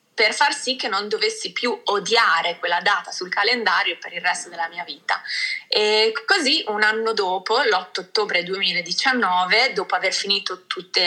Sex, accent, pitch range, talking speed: female, native, 180-270 Hz, 165 wpm